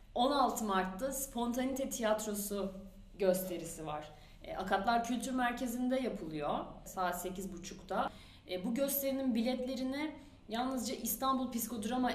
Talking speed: 100 wpm